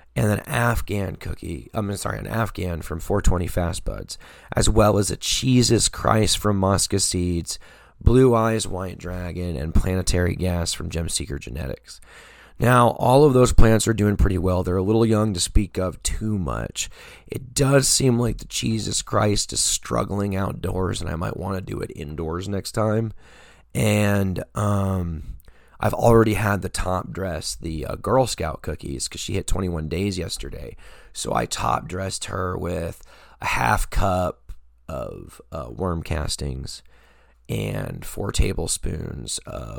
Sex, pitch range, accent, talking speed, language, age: male, 80-110 Hz, American, 160 wpm, English, 30-49